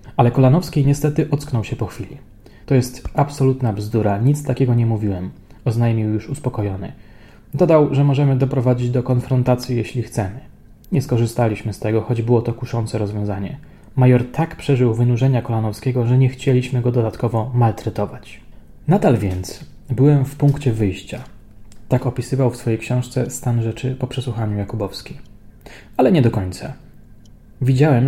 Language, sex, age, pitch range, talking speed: Polish, male, 20-39, 110-135 Hz, 145 wpm